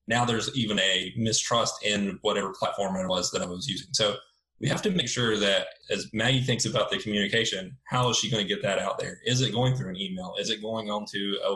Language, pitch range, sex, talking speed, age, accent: English, 100-125 Hz, male, 245 wpm, 20-39, American